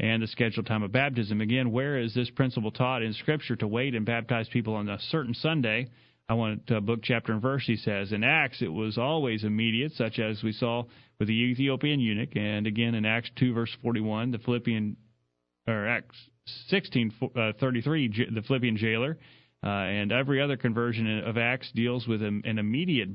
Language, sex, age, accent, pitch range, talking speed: English, male, 40-59, American, 115-130 Hz, 190 wpm